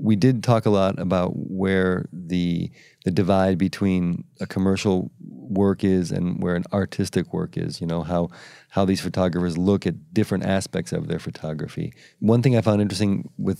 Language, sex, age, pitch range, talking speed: English, male, 30-49, 90-95 Hz, 175 wpm